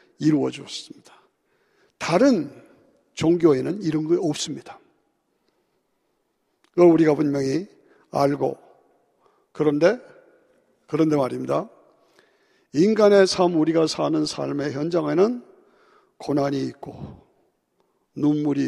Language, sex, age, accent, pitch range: Korean, male, 50-69, native, 155-230 Hz